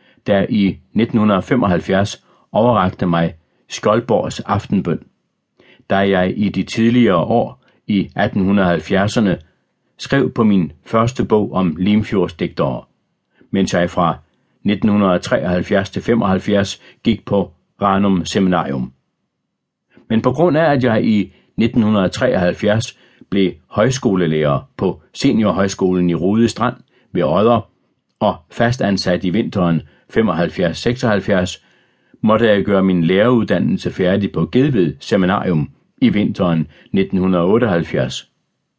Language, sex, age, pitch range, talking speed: Danish, male, 60-79, 90-110 Hz, 100 wpm